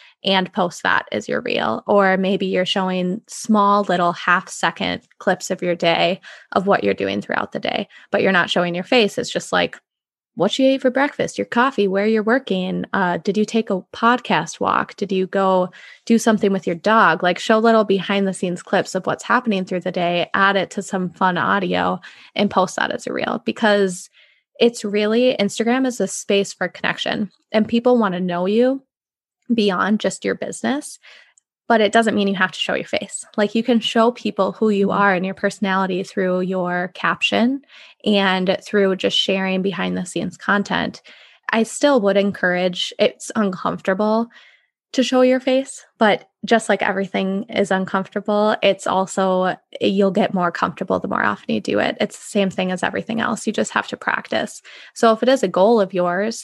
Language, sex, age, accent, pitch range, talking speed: English, female, 20-39, American, 185-225 Hz, 190 wpm